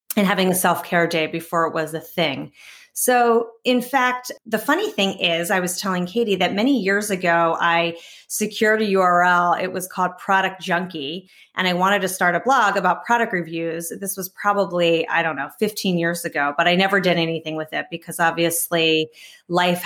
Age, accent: 30-49, American